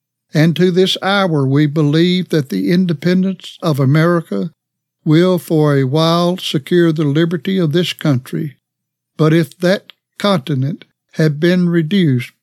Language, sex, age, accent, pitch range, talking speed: English, male, 60-79, American, 140-175 Hz, 135 wpm